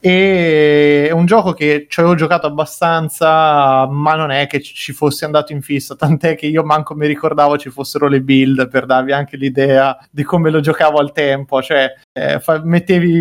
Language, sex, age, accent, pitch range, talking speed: Italian, male, 20-39, native, 135-155 Hz, 185 wpm